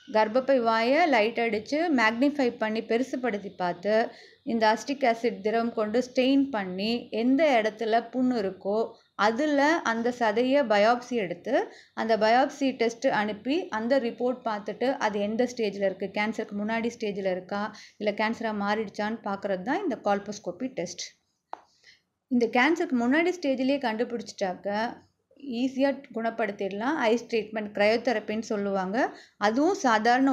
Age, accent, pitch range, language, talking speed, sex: 20-39, native, 215-270 Hz, Tamil, 120 wpm, female